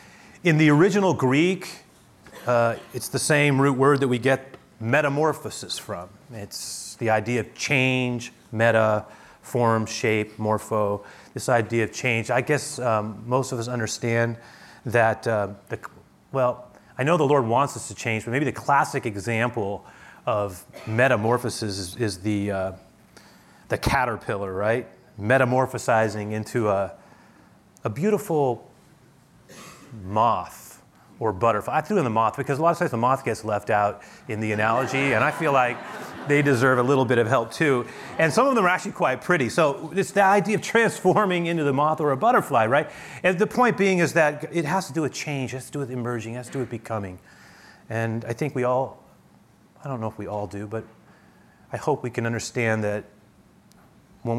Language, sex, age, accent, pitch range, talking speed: English, male, 30-49, American, 110-140 Hz, 180 wpm